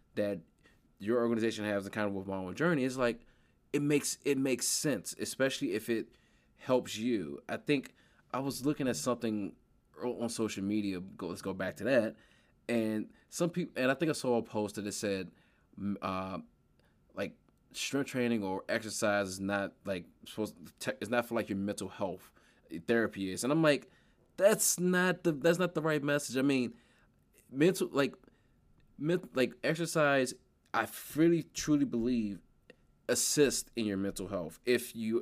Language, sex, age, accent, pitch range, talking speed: English, male, 20-39, American, 105-140 Hz, 170 wpm